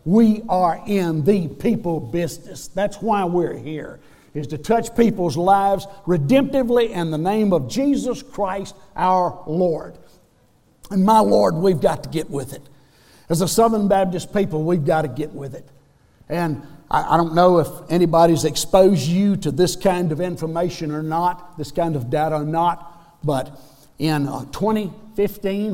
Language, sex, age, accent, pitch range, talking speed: English, male, 60-79, American, 145-180 Hz, 165 wpm